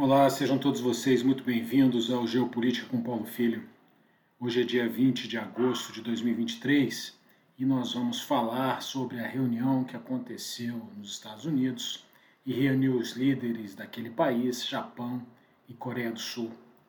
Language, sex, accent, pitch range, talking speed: Portuguese, male, Brazilian, 115-140 Hz, 150 wpm